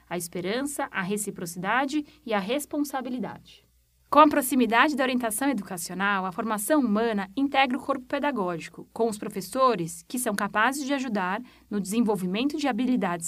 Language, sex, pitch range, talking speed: Portuguese, female, 200-275 Hz, 145 wpm